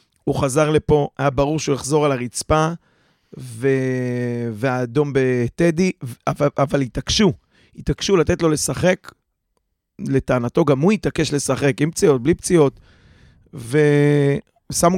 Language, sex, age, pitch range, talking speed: Hebrew, male, 30-49, 135-175 Hz, 110 wpm